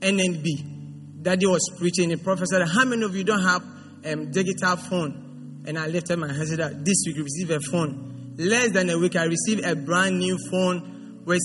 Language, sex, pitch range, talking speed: English, male, 170-230 Hz, 220 wpm